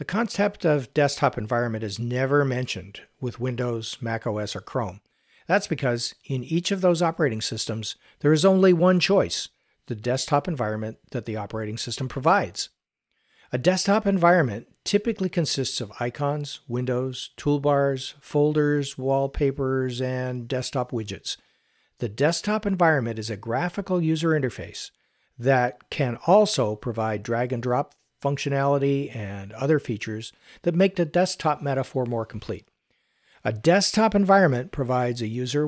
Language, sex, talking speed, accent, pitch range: English, male, 130 wpm, American, 115-160 Hz